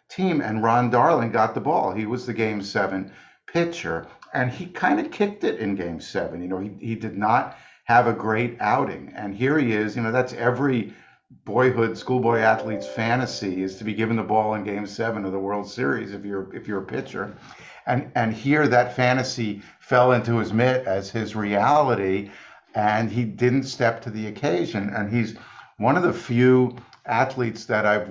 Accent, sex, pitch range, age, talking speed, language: American, male, 105-125 Hz, 50-69, 195 wpm, English